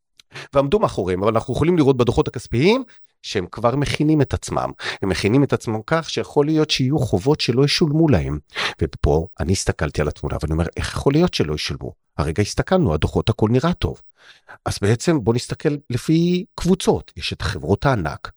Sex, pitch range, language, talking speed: male, 95-150 Hz, Hebrew, 175 wpm